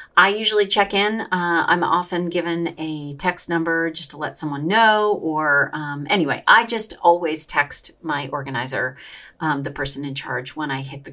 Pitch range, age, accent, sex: 150-215 Hz, 40-59, American, female